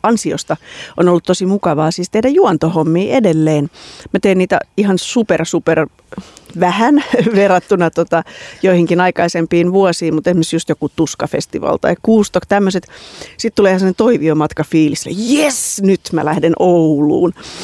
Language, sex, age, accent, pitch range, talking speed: Finnish, female, 30-49, native, 160-200 Hz, 125 wpm